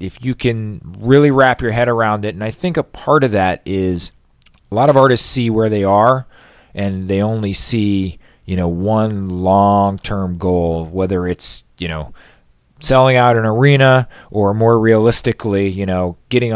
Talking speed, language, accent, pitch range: 175 wpm, English, American, 85-110 Hz